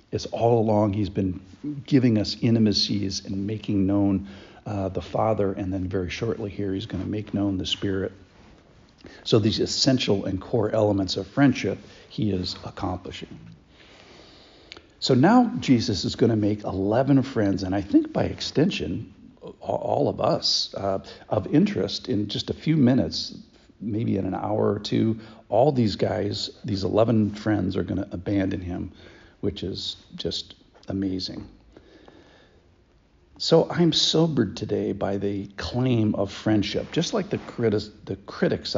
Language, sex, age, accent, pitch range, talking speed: English, male, 60-79, American, 95-120 Hz, 145 wpm